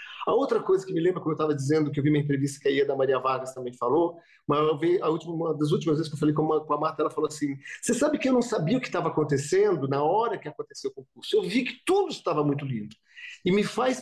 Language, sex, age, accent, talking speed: English, male, 40-59, Brazilian, 285 wpm